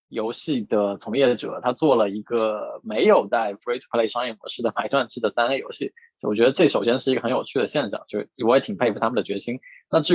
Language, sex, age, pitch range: Chinese, male, 20-39, 115-160 Hz